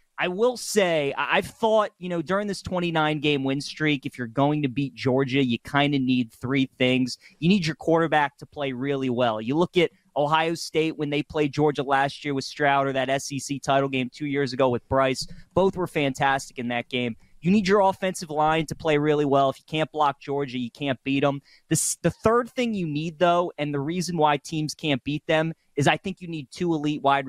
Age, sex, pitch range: 30-49, male, 140-170 Hz